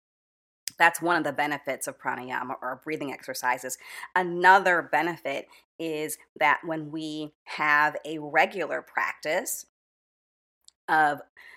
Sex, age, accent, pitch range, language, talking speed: female, 40-59, American, 145-180 Hz, English, 110 wpm